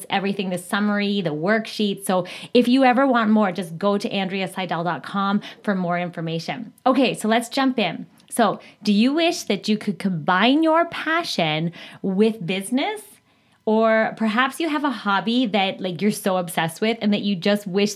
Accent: American